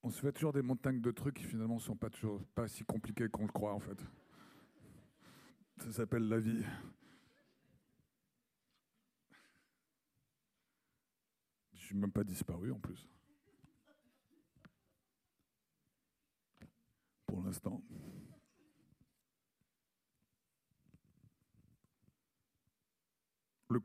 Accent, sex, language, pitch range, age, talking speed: French, male, French, 100-115 Hz, 50-69, 90 wpm